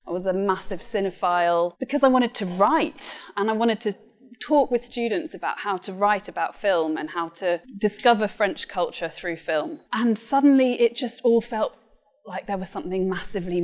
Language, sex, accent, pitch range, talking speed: English, female, British, 180-240 Hz, 185 wpm